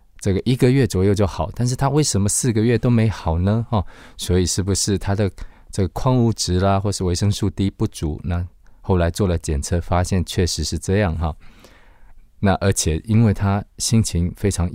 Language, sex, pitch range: Chinese, male, 85-100 Hz